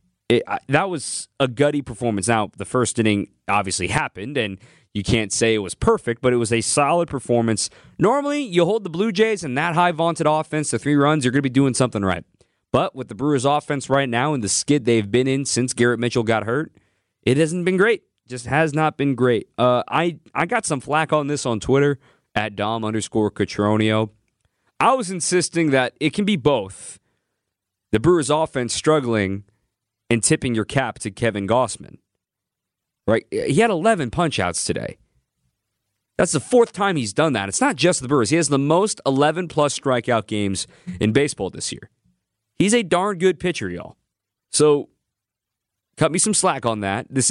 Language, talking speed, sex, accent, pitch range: English, 190 wpm, male, American, 110-155 Hz